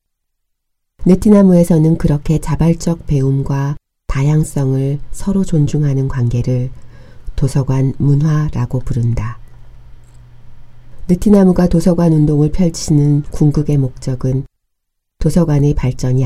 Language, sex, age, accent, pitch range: Korean, female, 40-59, native, 130-165 Hz